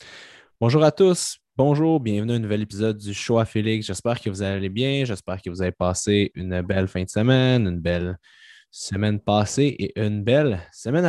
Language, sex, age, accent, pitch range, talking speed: French, male, 20-39, Canadian, 95-130 Hz, 195 wpm